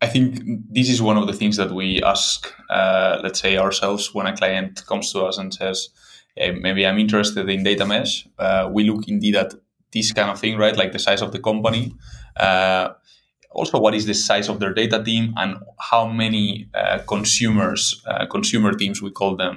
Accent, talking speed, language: Spanish, 205 wpm, English